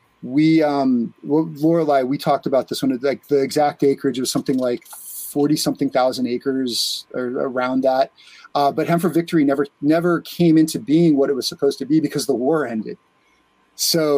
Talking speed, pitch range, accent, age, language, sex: 185 wpm, 130-155 Hz, American, 30-49, English, male